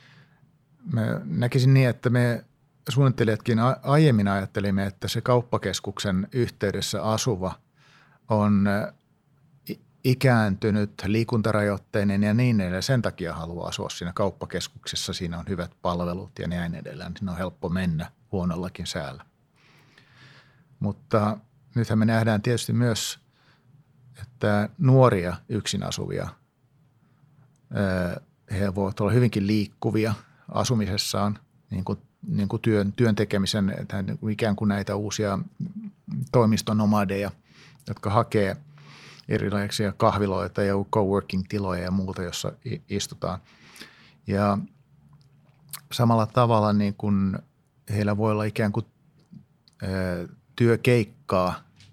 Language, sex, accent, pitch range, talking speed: Finnish, male, native, 100-130 Hz, 100 wpm